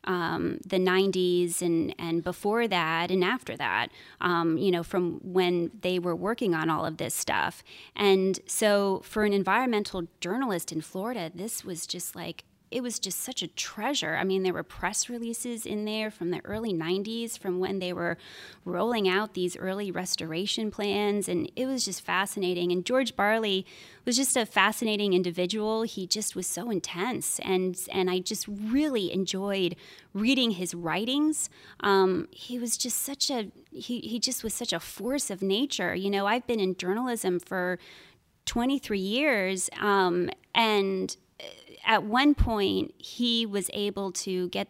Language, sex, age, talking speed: English, female, 20-39, 165 wpm